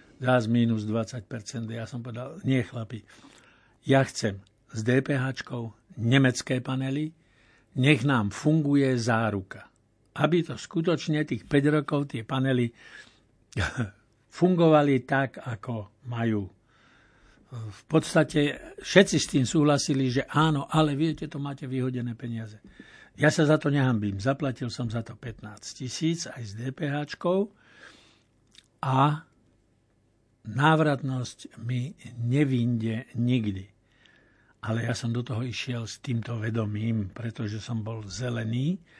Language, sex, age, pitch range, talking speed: Slovak, male, 60-79, 115-140 Hz, 115 wpm